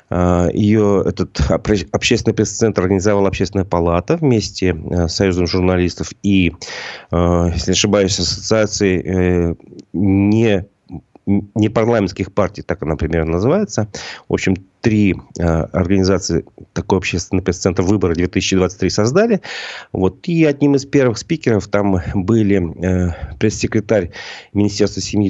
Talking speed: 110 wpm